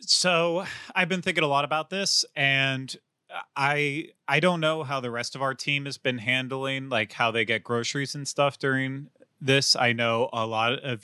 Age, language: 30-49, English